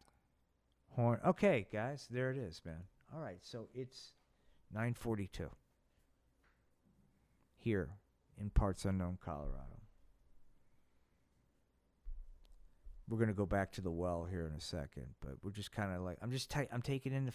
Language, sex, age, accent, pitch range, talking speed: English, male, 50-69, American, 90-130 Hz, 145 wpm